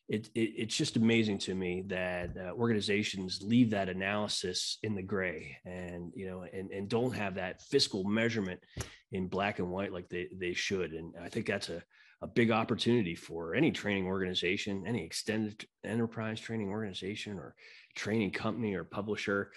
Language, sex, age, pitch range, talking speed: English, male, 30-49, 90-110 Hz, 165 wpm